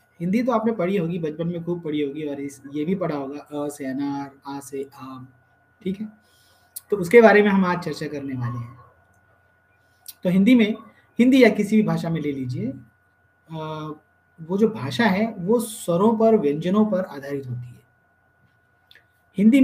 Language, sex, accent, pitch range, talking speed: Hindi, male, native, 140-210 Hz, 170 wpm